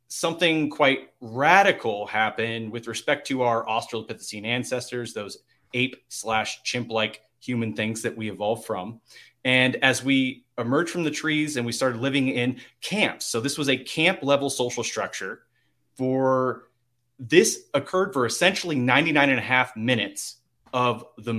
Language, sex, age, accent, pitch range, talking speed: English, male, 30-49, American, 120-150 Hz, 150 wpm